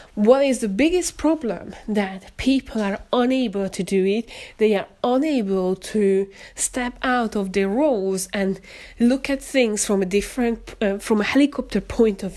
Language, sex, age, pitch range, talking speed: English, female, 30-49, 200-255 Hz, 165 wpm